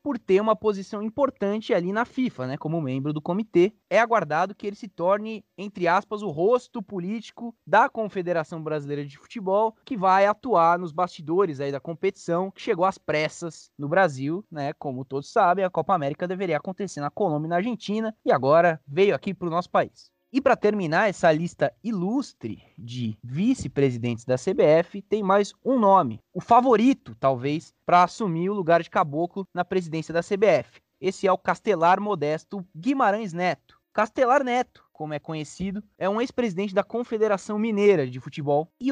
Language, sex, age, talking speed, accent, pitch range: Portuguese, male, 20-39, 175 wpm, Brazilian, 160-210 Hz